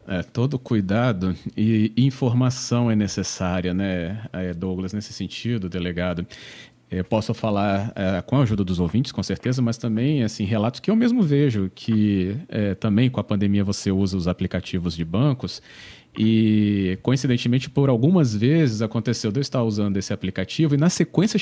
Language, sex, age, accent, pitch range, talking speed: Portuguese, male, 40-59, Brazilian, 100-140 Hz, 160 wpm